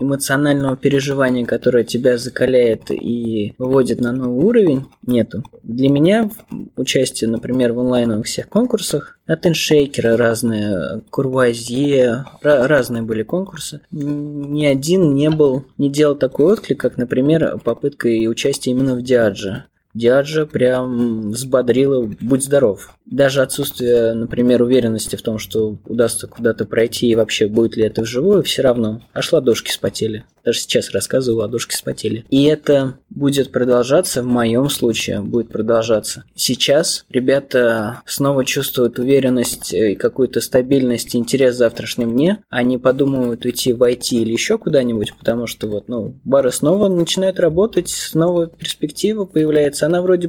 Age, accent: 20-39, native